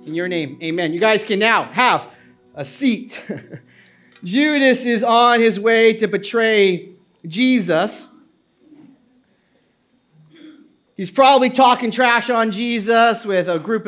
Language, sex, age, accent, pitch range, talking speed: English, male, 40-59, American, 220-285 Hz, 120 wpm